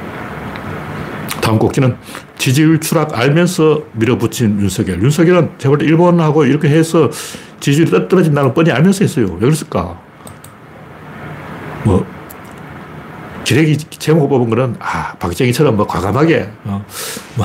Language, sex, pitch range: Korean, male, 115-160 Hz